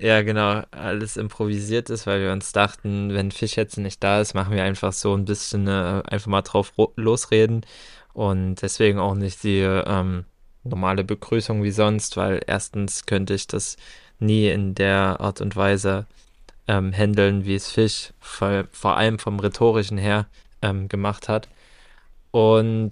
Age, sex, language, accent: 20-39, male, German, German